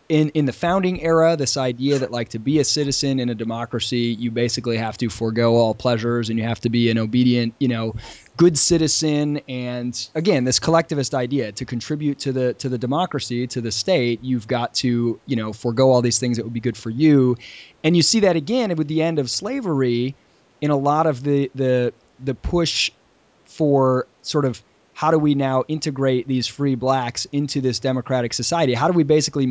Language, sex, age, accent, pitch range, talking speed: English, male, 20-39, American, 120-150 Hz, 205 wpm